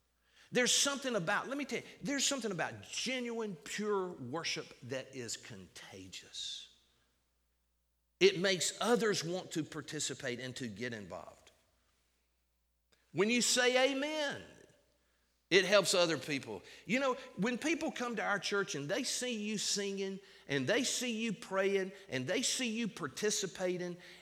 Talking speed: 140 wpm